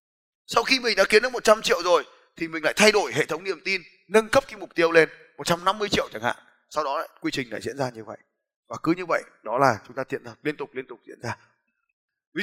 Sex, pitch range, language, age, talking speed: male, 165-240 Hz, Vietnamese, 20-39, 260 wpm